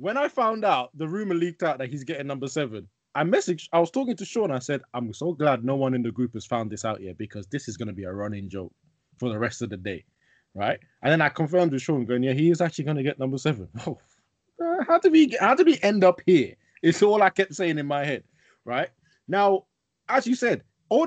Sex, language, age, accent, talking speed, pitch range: male, English, 20-39, British, 255 wpm, 120-170 Hz